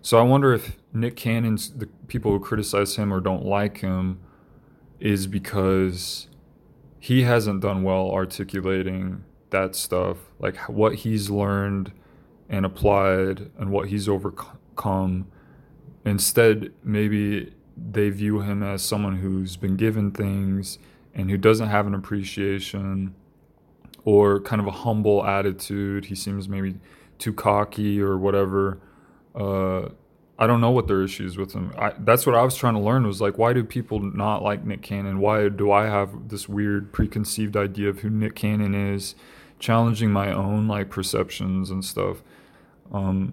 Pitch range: 95-110 Hz